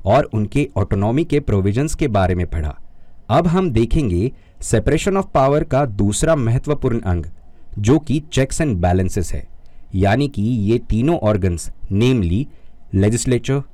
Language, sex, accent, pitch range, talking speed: Hindi, male, native, 95-135 Hz, 140 wpm